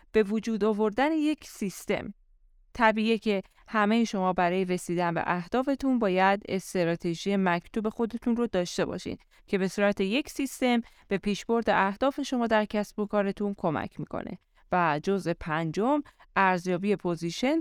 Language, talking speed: Persian, 135 wpm